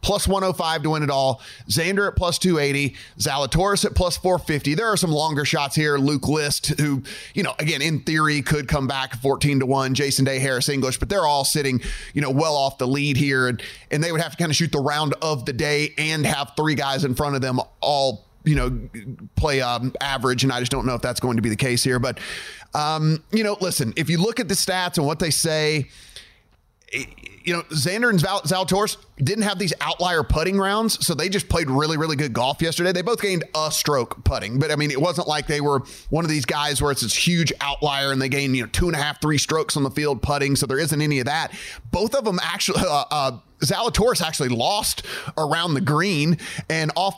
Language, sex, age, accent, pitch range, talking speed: English, male, 30-49, American, 135-170 Hz, 235 wpm